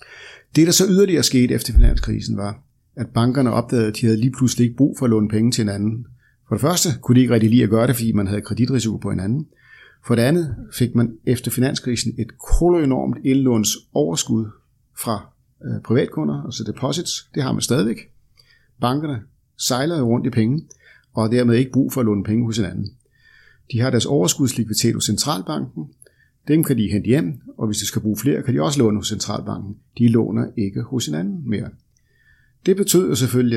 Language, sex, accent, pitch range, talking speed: Danish, male, native, 110-130 Hz, 195 wpm